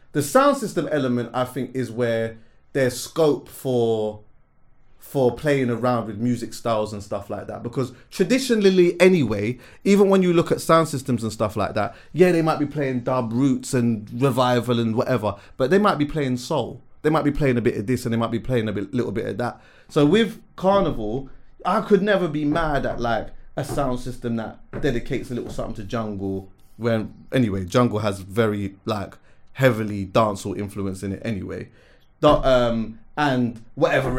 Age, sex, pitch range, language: 30-49, male, 110-145 Hz, English